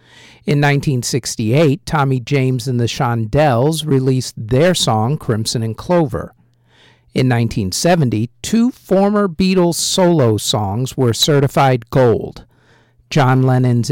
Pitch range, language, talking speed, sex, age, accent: 115-150 Hz, English, 110 wpm, male, 50-69, American